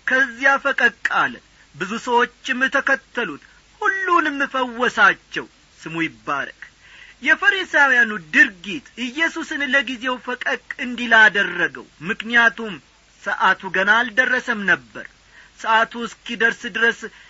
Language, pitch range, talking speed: Amharic, 205-270 Hz, 85 wpm